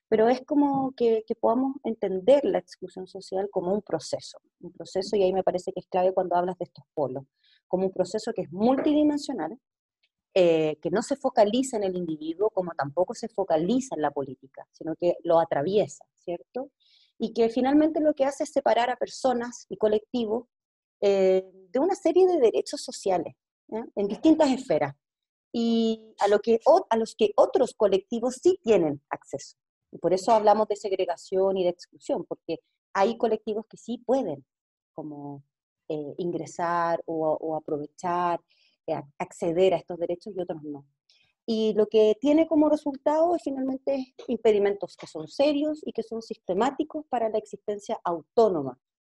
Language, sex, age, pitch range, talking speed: Spanish, female, 30-49, 180-250 Hz, 165 wpm